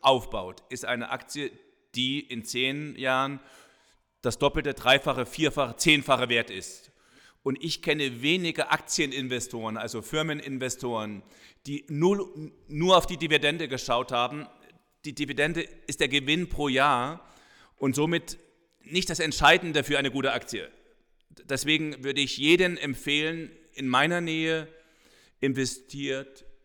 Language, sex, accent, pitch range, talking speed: German, male, German, 120-145 Hz, 125 wpm